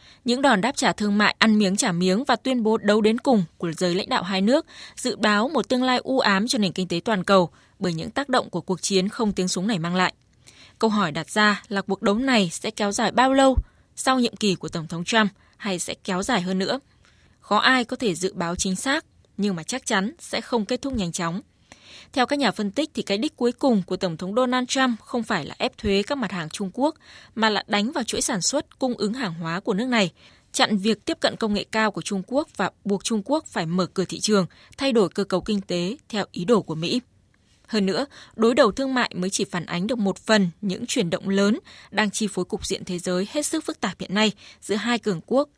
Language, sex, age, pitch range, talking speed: Vietnamese, female, 20-39, 185-240 Hz, 255 wpm